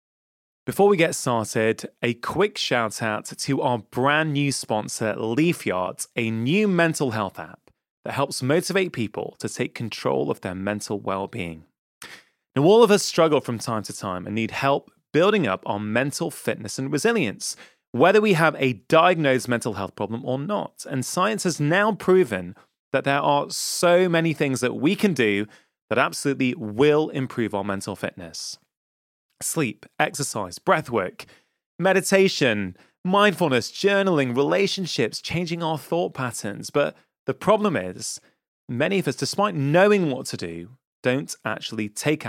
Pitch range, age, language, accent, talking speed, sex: 110-160 Hz, 30-49, English, British, 155 wpm, male